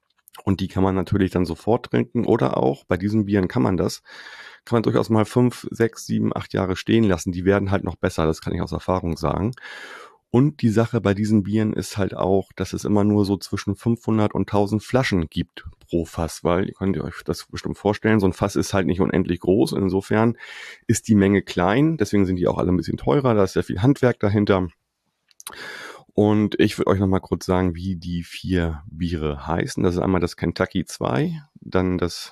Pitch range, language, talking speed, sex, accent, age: 90-110 Hz, German, 210 wpm, male, German, 30-49